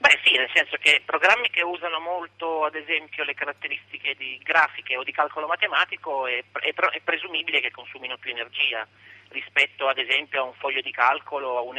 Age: 40-59